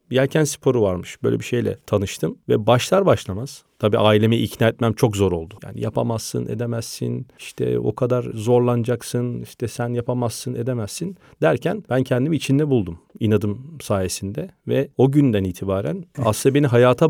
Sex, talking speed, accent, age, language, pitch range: male, 145 wpm, native, 40-59, Turkish, 105-135 Hz